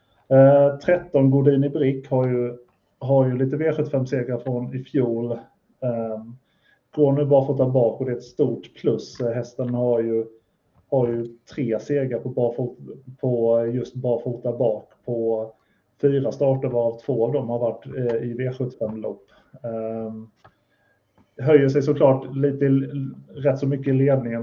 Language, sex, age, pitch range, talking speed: Swedish, male, 30-49, 120-135 Hz, 150 wpm